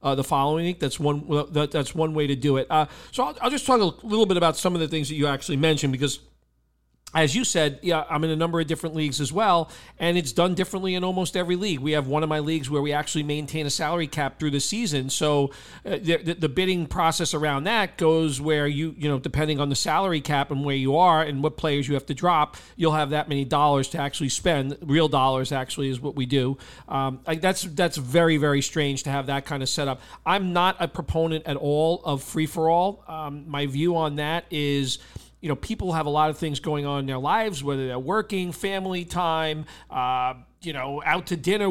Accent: American